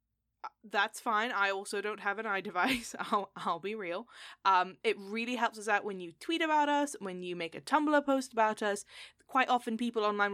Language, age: English, 10-29